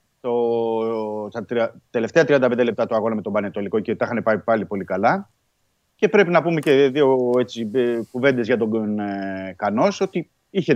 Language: Greek